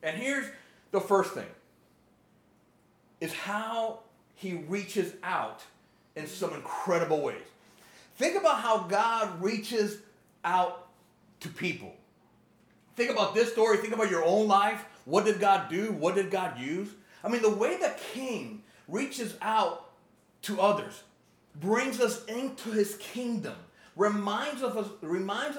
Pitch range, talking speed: 190-230 Hz, 130 wpm